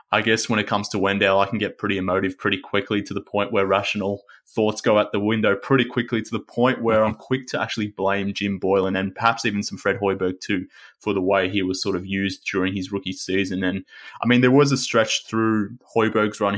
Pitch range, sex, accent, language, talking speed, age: 100-110 Hz, male, Australian, English, 240 wpm, 20-39